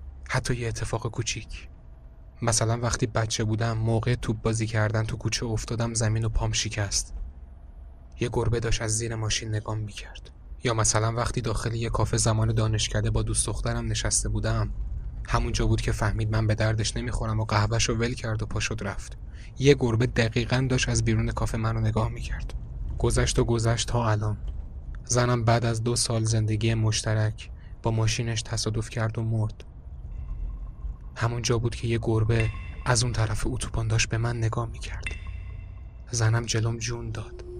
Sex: male